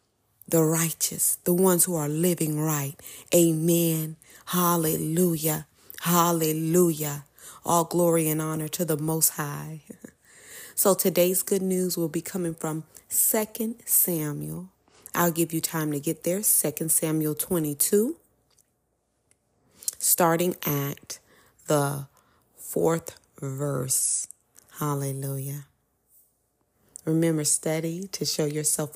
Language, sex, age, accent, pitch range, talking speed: English, female, 30-49, American, 145-170 Hz, 105 wpm